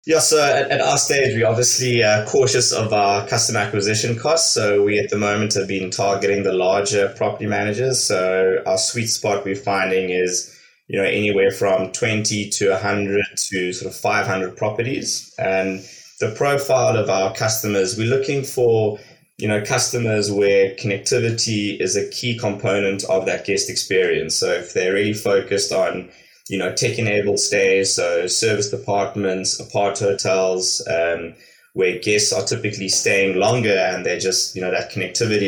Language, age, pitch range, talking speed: English, 20-39, 95-120 Hz, 165 wpm